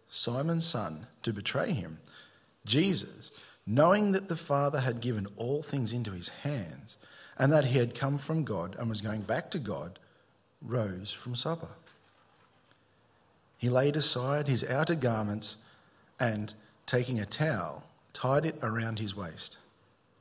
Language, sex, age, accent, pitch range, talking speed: English, male, 40-59, Australian, 110-145 Hz, 145 wpm